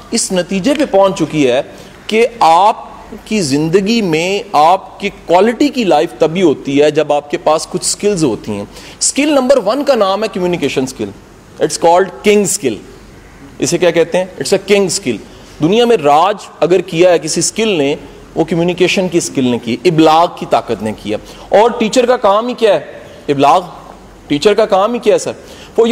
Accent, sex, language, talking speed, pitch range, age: Indian, male, English, 160 wpm, 180-240 Hz, 40-59